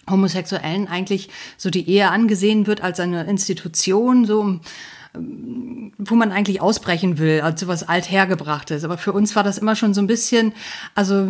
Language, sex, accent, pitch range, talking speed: German, female, German, 170-205 Hz, 170 wpm